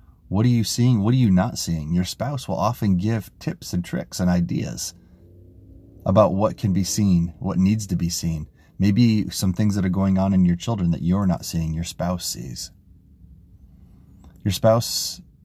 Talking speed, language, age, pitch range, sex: 185 wpm, English, 30-49, 90-100 Hz, male